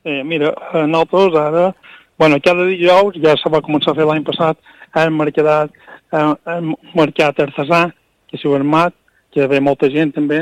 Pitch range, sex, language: 145-170 Hz, male, Spanish